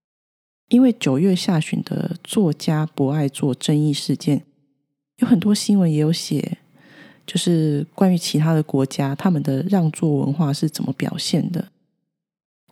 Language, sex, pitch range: Chinese, female, 145-195 Hz